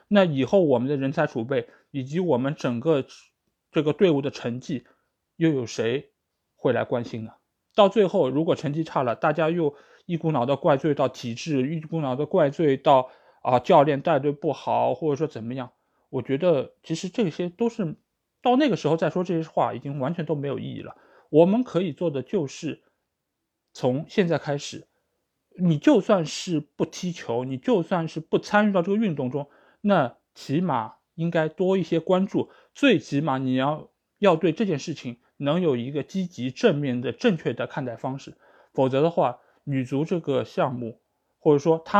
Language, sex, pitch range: Chinese, male, 130-175 Hz